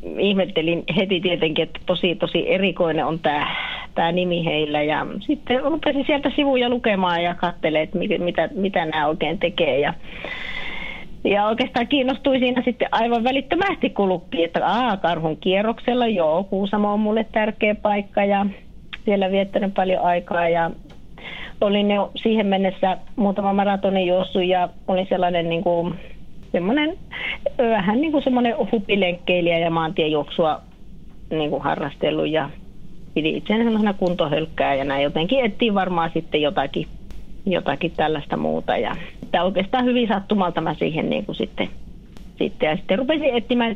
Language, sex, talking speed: Finnish, female, 135 wpm